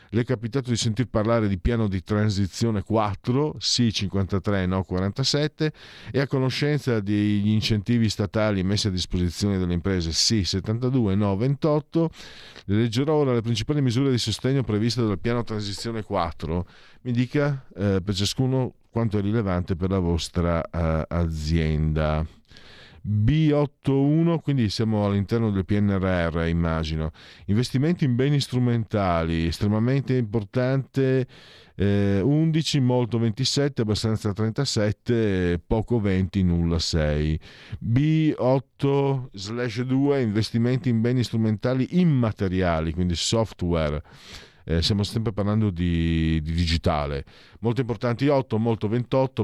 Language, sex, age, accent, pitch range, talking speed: Italian, male, 50-69, native, 95-125 Hz, 120 wpm